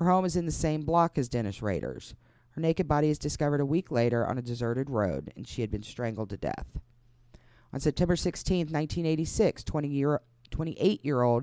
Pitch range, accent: 120-155 Hz, American